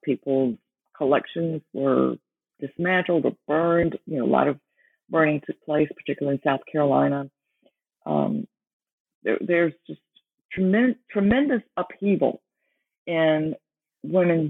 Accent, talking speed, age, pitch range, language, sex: American, 110 wpm, 50-69, 140-185 Hz, English, female